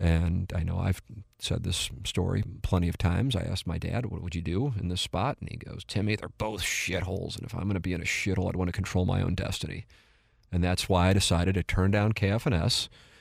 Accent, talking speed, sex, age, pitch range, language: American, 240 wpm, male, 40-59, 90-110 Hz, English